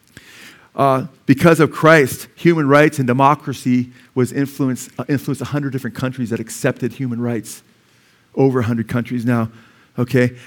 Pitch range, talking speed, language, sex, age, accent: 120-155 Hz, 145 wpm, English, male, 50-69, American